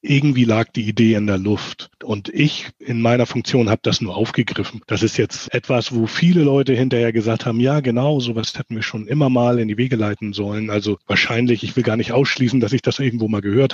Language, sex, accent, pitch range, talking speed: German, male, German, 110-135 Hz, 225 wpm